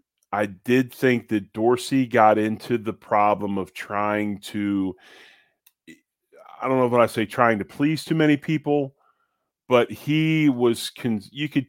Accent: American